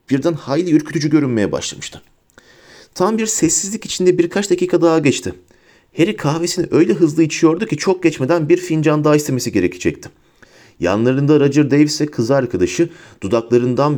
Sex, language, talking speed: male, Turkish, 140 wpm